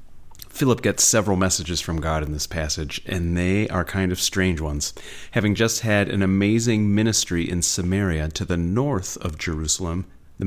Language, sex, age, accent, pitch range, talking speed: English, male, 30-49, American, 85-115 Hz, 170 wpm